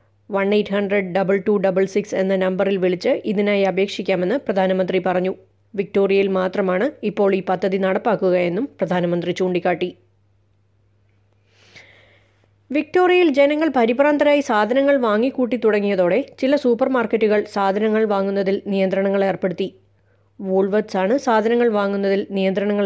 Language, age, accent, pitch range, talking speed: Malayalam, 20-39, native, 190-235 Hz, 100 wpm